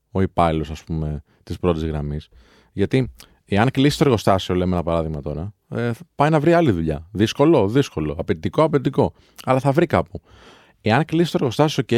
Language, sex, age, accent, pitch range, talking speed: Greek, male, 30-49, native, 85-120 Hz, 160 wpm